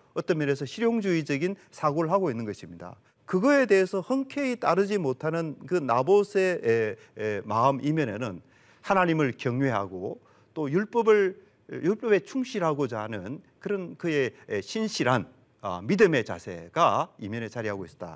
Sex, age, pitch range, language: male, 40-59, 130-205 Hz, Korean